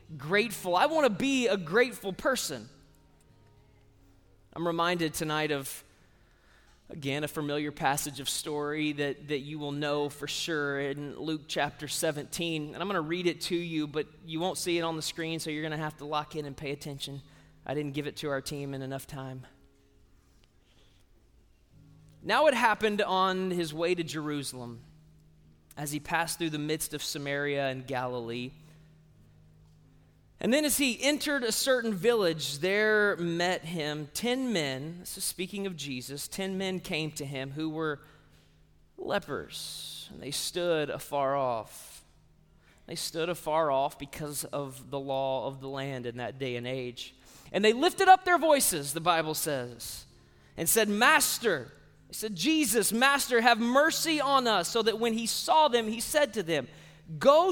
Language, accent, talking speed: English, American, 170 wpm